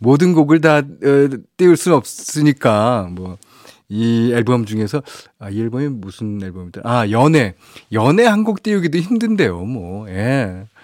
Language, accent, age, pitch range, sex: Korean, native, 40-59, 105-150 Hz, male